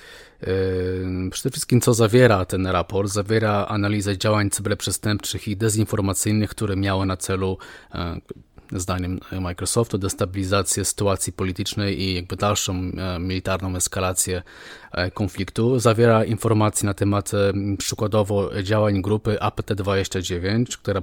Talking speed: 105 wpm